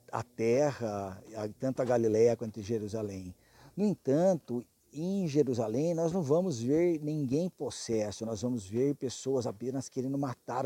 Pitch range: 115-150 Hz